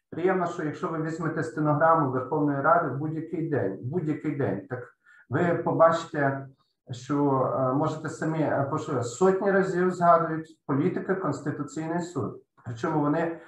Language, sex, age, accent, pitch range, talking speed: Ukrainian, male, 50-69, native, 135-175 Hz, 125 wpm